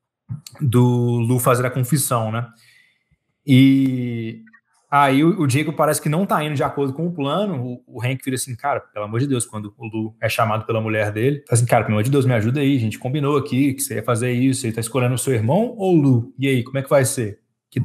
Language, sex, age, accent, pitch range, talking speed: Portuguese, male, 20-39, Brazilian, 120-145 Hz, 245 wpm